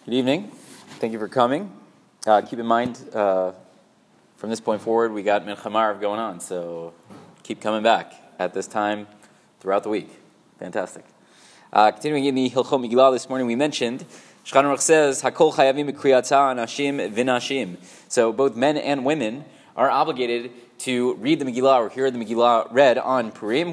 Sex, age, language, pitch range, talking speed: male, 20-39, English, 115-145 Hz, 155 wpm